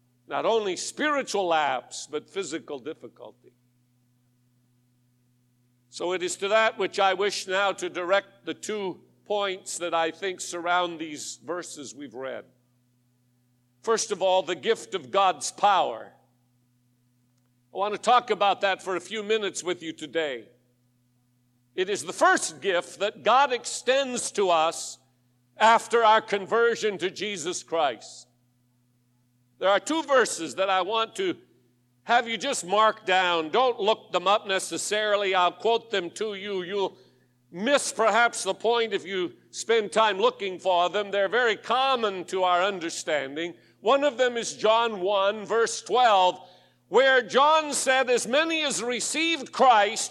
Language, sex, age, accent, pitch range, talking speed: English, male, 50-69, American, 150-230 Hz, 145 wpm